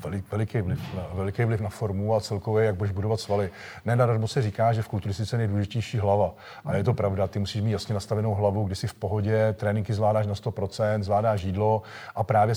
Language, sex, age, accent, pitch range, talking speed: Czech, male, 40-59, native, 105-125 Hz, 215 wpm